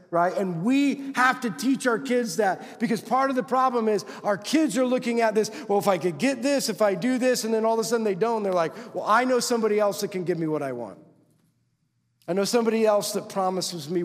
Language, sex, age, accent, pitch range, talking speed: English, male, 40-59, American, 150-210 Hz, 260 wpm